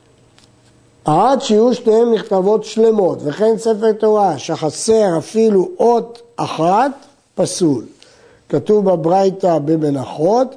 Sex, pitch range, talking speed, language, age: male, 170-220 Hz, 90 wpm, Hebrew, 60-79